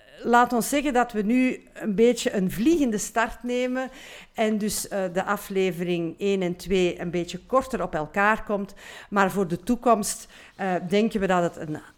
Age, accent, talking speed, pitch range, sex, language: 50-69, Dutch, 170 wpm, 175-230 Hz, female, Dutch